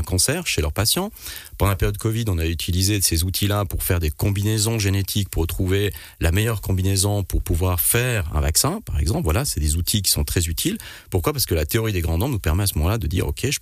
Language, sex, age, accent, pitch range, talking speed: French, male, 40-59, French, 85-105 Hz, 255 wpm